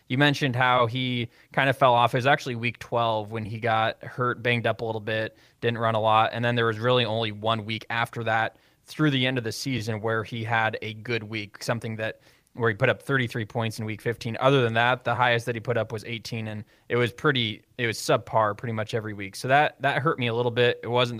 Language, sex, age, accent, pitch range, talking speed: English, male, 20-39, American, 110-125 Hz, 260 wpm